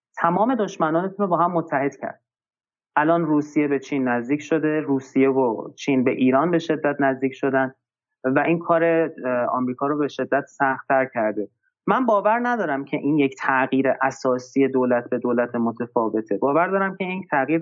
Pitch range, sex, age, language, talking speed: 125-170 Hz, male, 30-49, Persian, 165 wpm